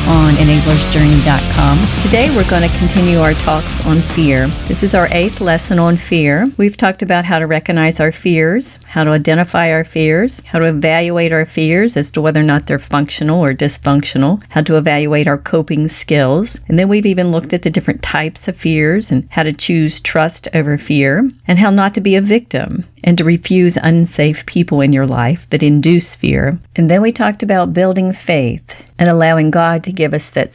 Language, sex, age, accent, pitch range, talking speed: English, female, 40-59, American, 145-185 Hz, 195 wpm